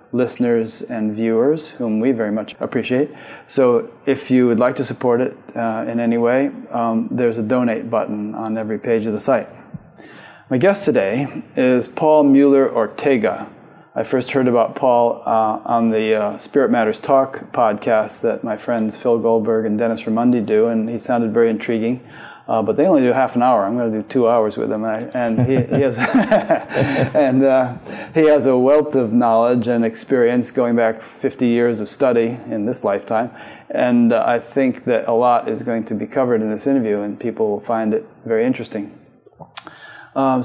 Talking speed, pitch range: 190 wpm, 115-130 Hz